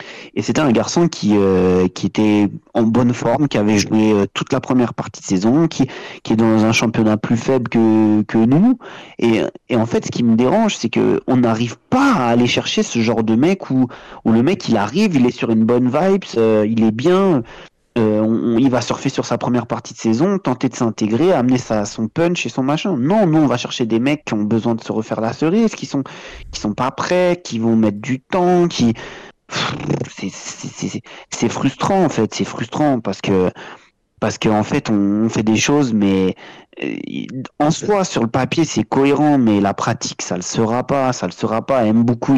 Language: French